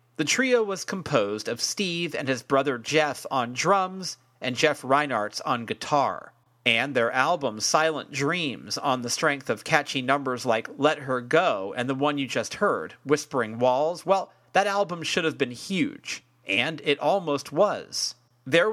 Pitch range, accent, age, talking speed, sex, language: 125-160 Hz, American, 40-59, 165 wpm, male, English